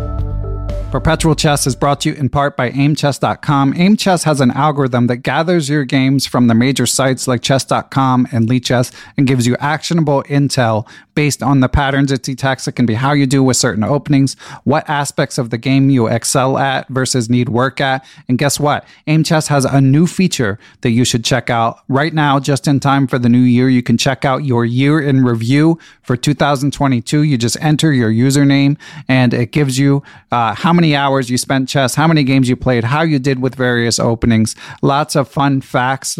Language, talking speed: English, 200 wpm